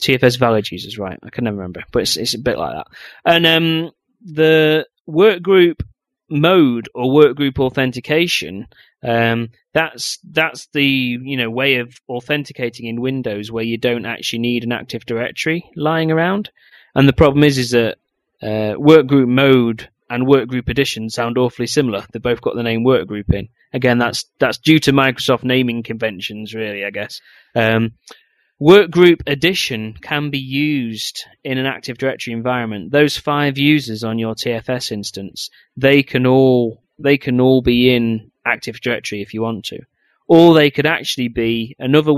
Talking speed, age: 170 wpm, 30-49